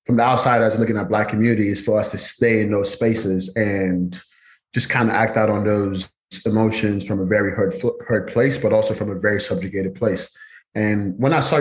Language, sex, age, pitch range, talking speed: English, male, 20-39, 105-120 Hz, 210 wpm